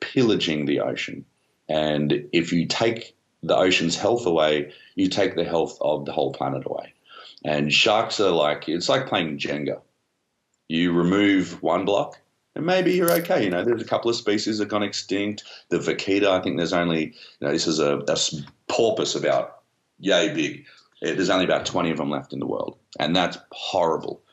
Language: English